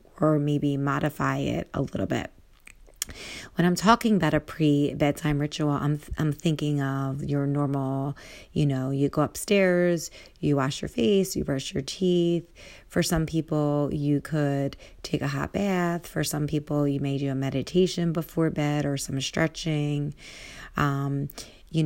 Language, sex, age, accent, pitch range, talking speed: English, female, 30-49, American, 140-160 Hz, 160 wpm